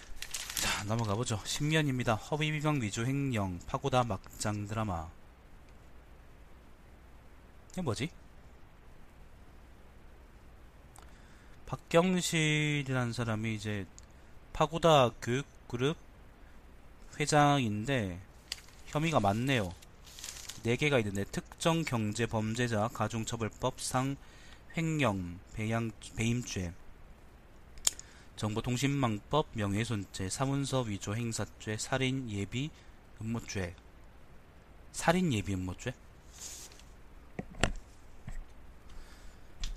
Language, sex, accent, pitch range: Korean, male, native, 85-125 Hz